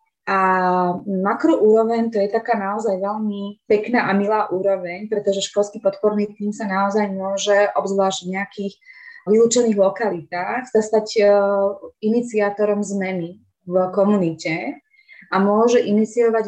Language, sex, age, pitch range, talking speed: Slovak, female, 20-39, 185-210 Hz, 115 wpm